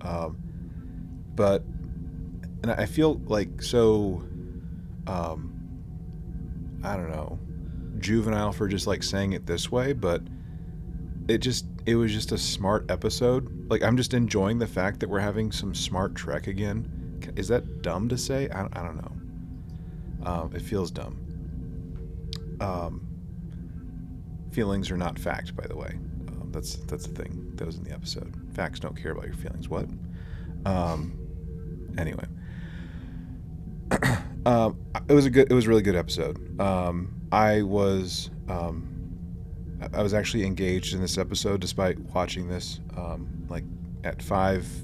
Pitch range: 85-105 Hz